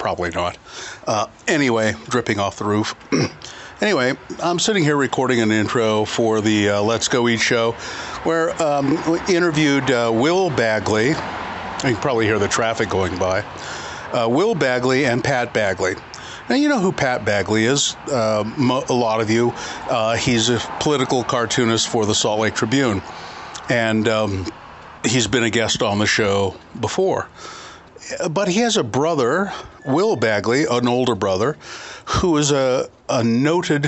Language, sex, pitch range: English, male, 110-135 Hz